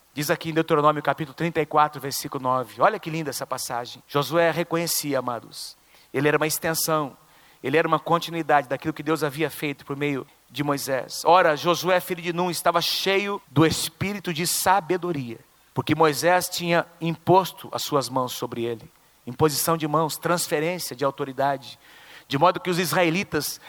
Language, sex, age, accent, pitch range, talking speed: Portuguese, male, 40-59, Brazilian, 145-185 Hz, 160 wpm